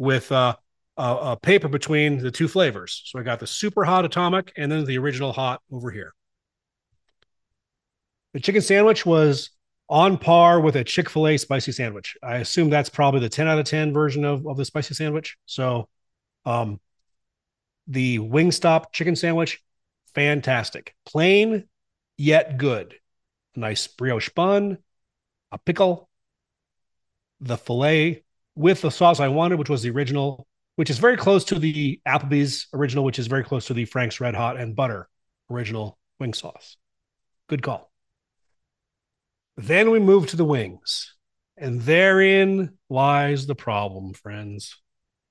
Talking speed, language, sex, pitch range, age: 145 wpm, English, male, 120-165 Hz, 30-49